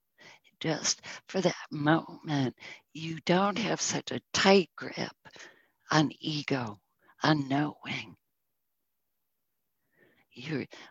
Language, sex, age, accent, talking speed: English, female, 60-79, American, 90 wpm